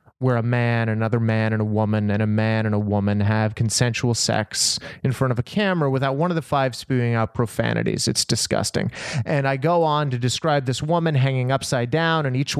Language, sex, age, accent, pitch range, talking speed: English, male, 30-49, American, 130-170 Hz, 220 wpm